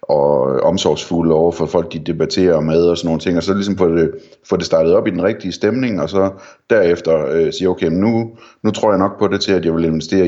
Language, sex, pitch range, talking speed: Danish, male, 80-95 Hz, 255 wpm